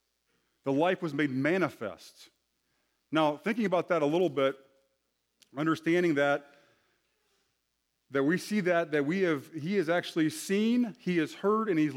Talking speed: 150 wpm